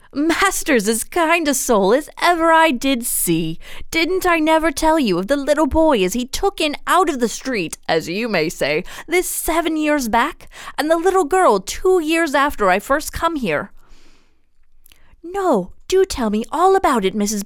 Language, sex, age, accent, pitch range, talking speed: English, female, 20-39, American, 205-330 Hz, 185 wpm